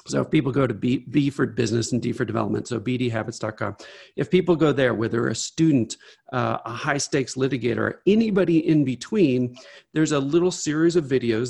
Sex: male